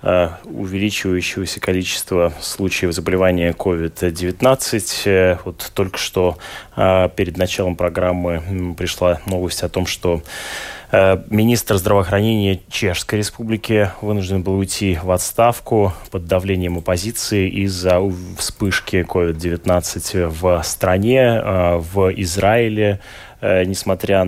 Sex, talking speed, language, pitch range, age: male, 90 wpm, Russian, 90-100 Hz, 20-39